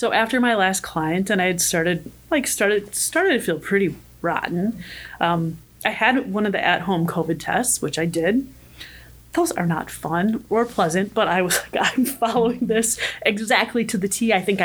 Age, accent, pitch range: 30-49, American, 180-225 Hz